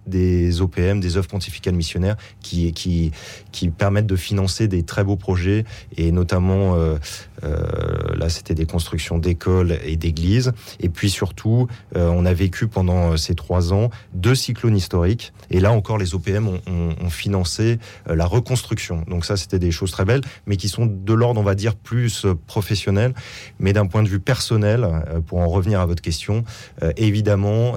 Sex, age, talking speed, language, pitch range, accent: male, 30-49, 180 wpm, French, 85-105 Hz, French